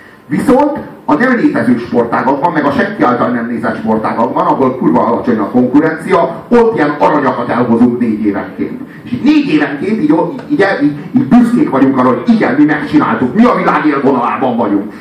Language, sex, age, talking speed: Hungarian, male, 40-59, 170 wpm